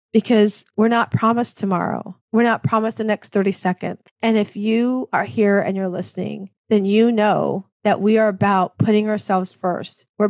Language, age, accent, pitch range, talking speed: English, 40-59, American, 190-220 Hz, 180 wpm